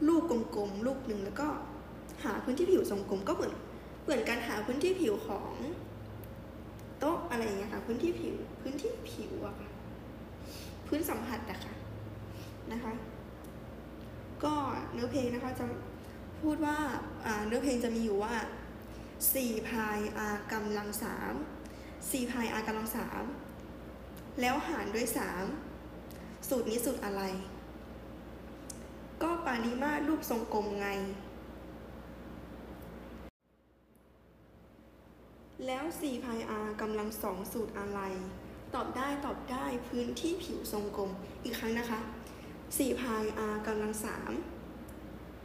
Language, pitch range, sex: Thai, 190-260 Hz, female